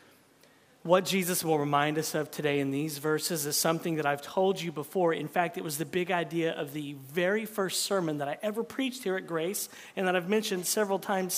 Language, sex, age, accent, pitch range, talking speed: English, male, 40-59, American, 180-275 Hz, 220 wpm